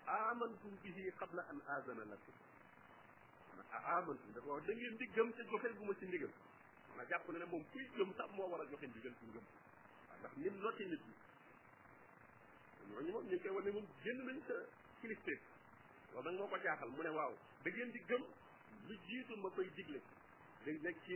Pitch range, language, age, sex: 145-225 Hz, French, 50-69, male